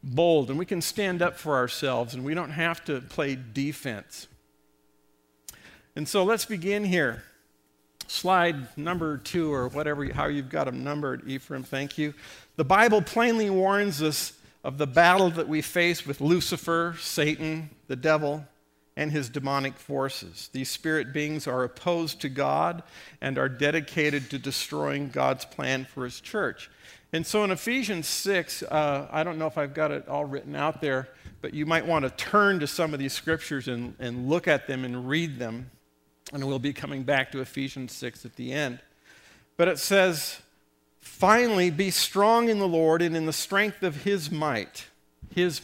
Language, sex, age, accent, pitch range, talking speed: English, male, 50-69, American, 130-175 Hz, 175 wpm